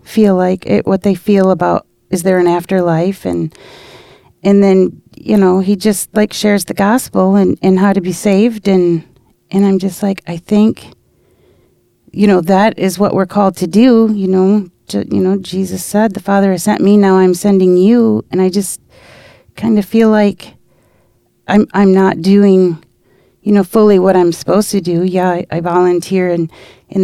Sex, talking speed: female, 190 wpm